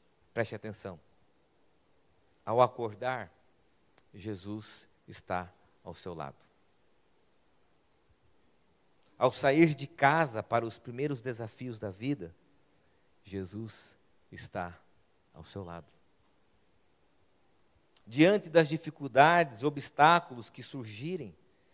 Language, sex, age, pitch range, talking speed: Portuguese, male, 50-69, 100-160 Hz, 85 wpm